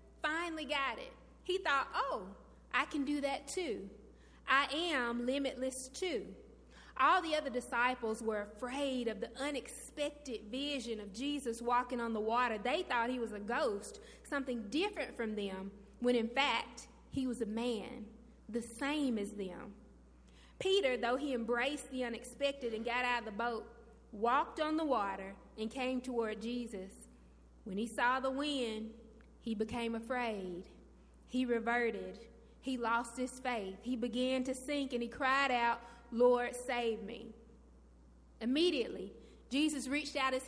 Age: 20-39